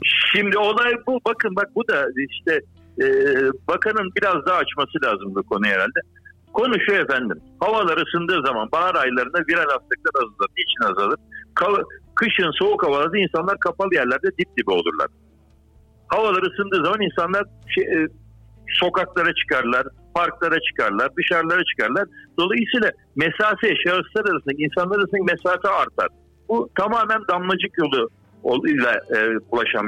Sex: male